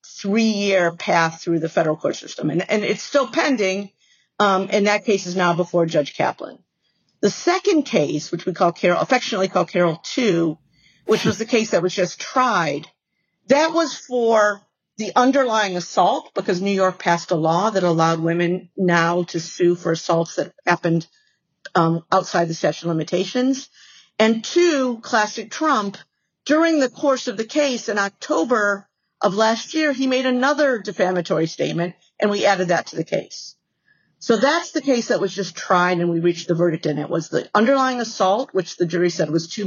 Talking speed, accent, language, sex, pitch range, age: 180 wpm, American, English, female, 170-245 Hz, 50-69